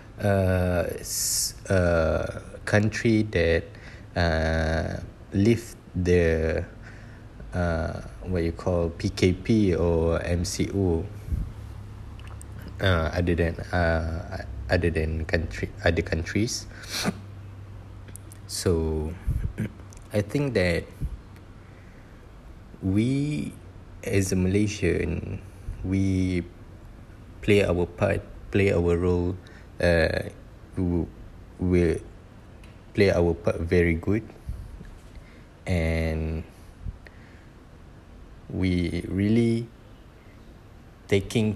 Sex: male